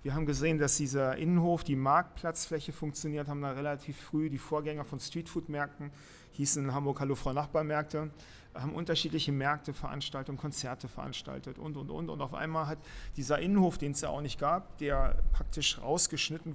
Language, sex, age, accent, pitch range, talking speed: German, male, 40-59, German, 140-160 Hz, 170 wpm